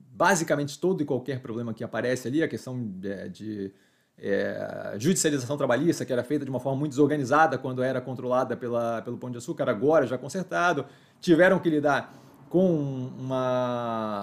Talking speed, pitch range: 165 wpm, 125-155 Hz